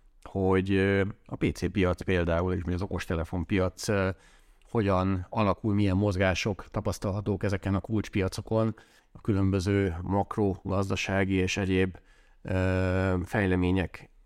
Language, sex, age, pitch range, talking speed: Hungarian, male, 30-49, 90-100 Hz, 100 wpm